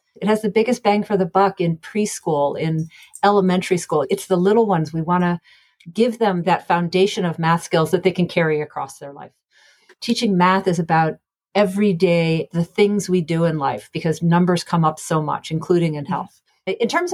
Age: 40-59